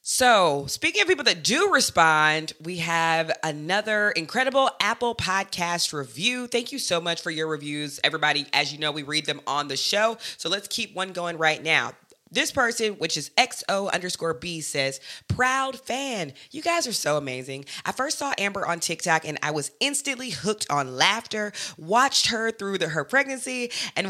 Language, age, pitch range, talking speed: English, 20-39, 160-240 Hz, 180 wpm